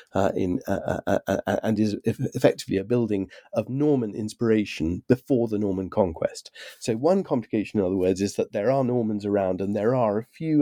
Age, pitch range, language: 40-59, 105-155 Hz, English